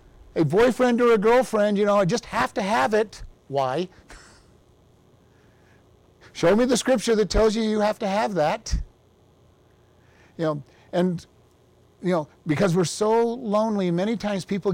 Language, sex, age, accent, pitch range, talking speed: English, male, 50-69, American, 160-215 Hz, 155 wpm